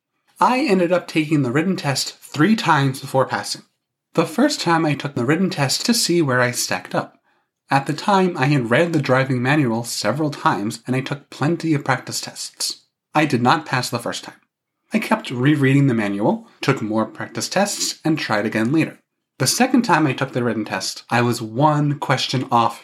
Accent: American